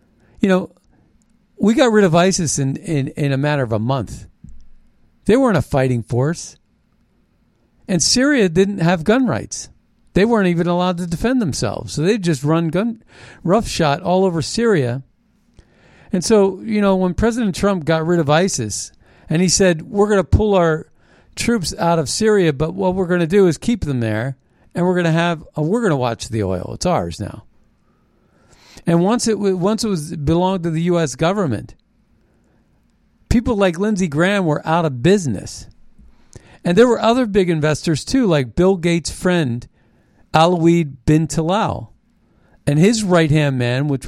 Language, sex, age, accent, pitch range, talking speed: English, male, 50-69, American, 145-200 Hz, 175 wpm